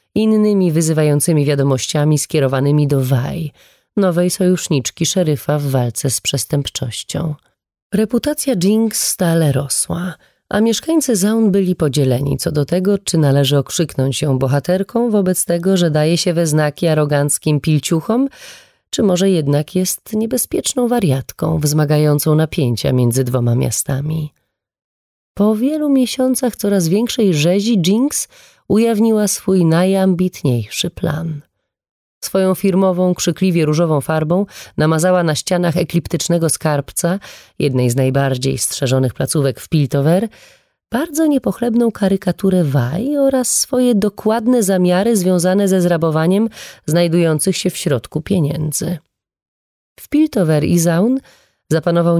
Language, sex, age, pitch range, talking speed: Polish, female, 30-49, 145-195 Hz, 115 wpm